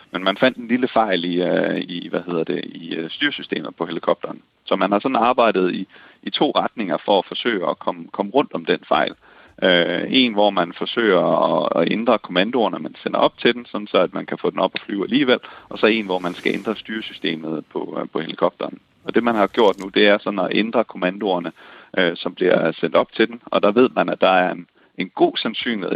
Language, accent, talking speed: Danish, native, 235 wpm